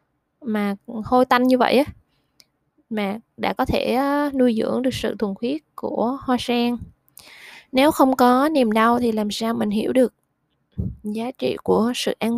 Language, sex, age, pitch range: Vietnamese, female, 20-39, 205-250 Hz